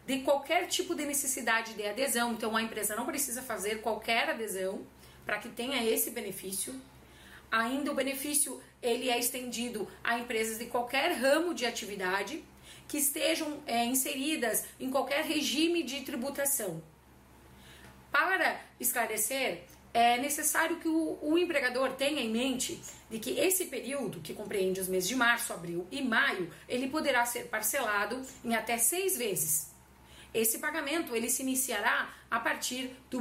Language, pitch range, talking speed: Portuguese, 220-285 Hz, 145 wpm